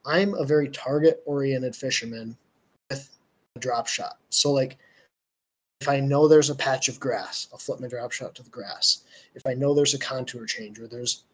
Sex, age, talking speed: male, 20-39, 190 wpm